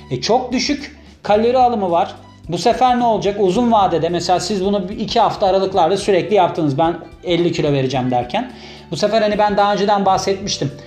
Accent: native